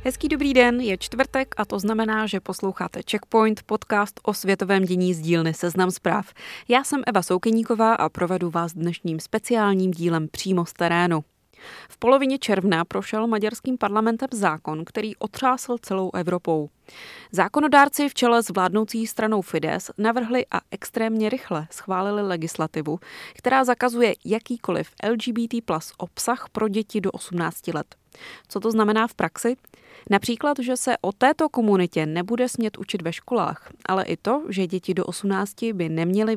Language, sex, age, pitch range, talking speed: Czech, female, 20-39, 175-230 Hz, 150 wpm